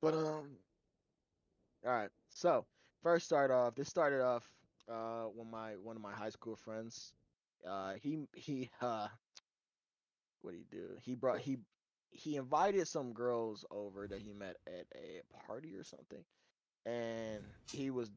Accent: American